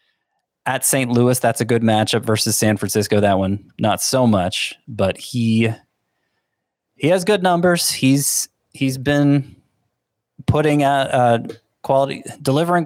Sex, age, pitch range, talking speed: male, 30-49, 105-140 Hz, 130 wpm